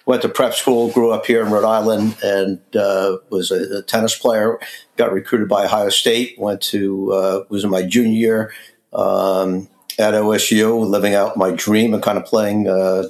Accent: American